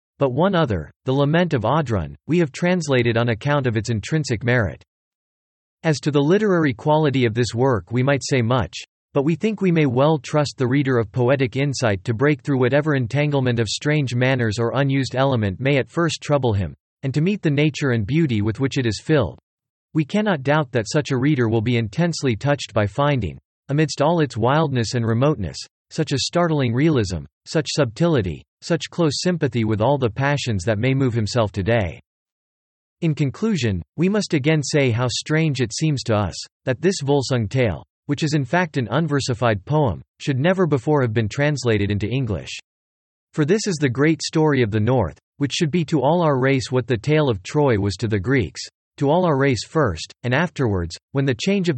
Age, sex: 40-59, male